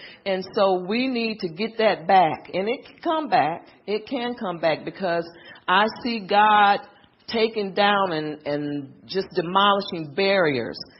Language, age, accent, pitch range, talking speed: English, 40-59, American, 175-220 Hz, 155 wpm